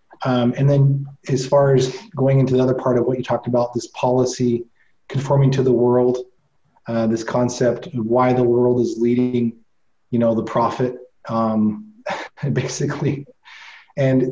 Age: 30-49